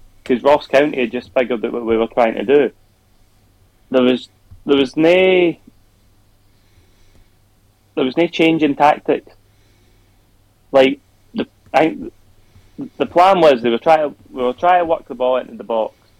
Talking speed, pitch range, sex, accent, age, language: 165 wpm, 100-130 Hz, male, British, 20-39, English